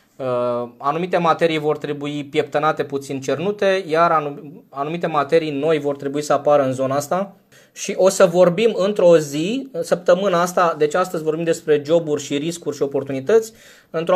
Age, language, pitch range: 20-39, Romanian, 145-180 Hz